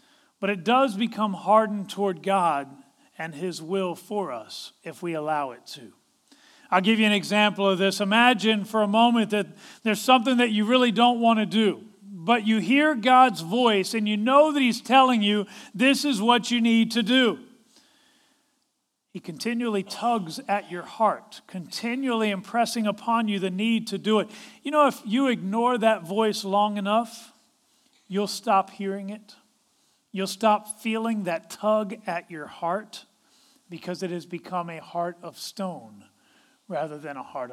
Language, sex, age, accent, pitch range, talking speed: English, male, 40-59, American, 190-240 Hz, 170 wpm